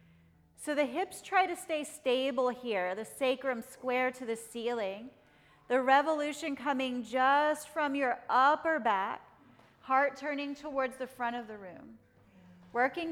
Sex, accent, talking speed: female, American, 140 wpm